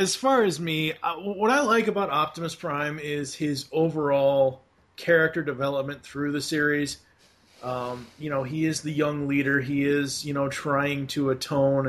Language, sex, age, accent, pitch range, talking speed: English, male, 30-49, American, 130-160 Hz, 165 wpm